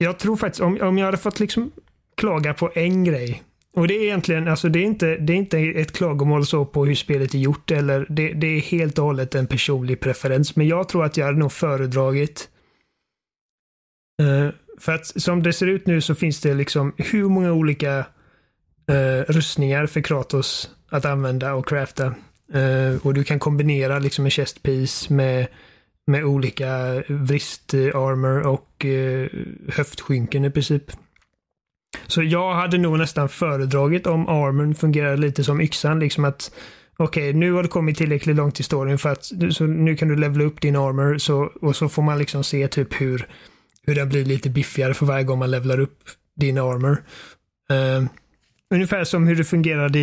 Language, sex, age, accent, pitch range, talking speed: Swedish, male, 30-49, native, 135-160 Hz, 185 wpm